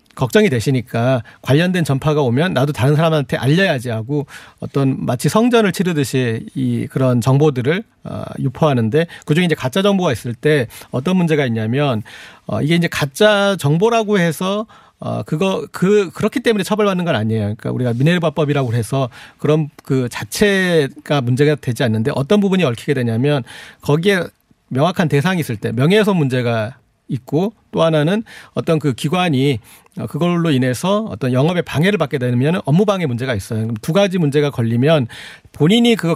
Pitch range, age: 130-180 Hz, 40-59